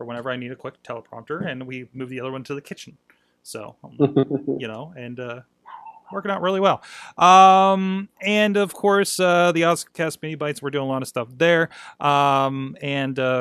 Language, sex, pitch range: English, male, 130-180 Hz